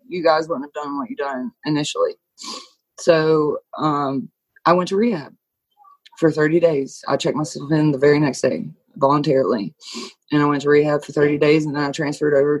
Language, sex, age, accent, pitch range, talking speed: English, female, 20-39, American, 140-180 Hz, 190 wpm